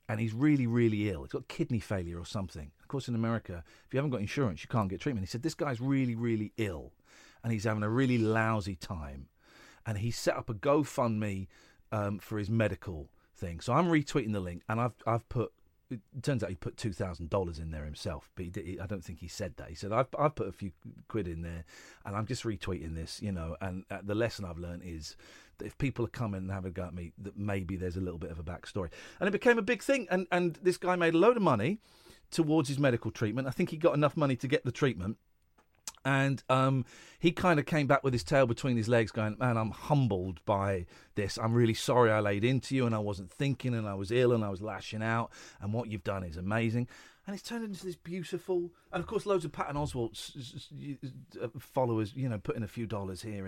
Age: 40-59